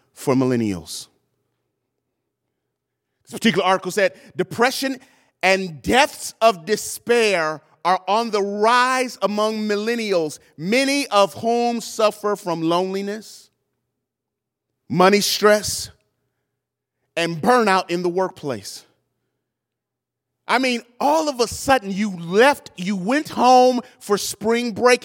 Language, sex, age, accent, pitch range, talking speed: English, male, 30-49, American, 195-260 Hz, 105 wpm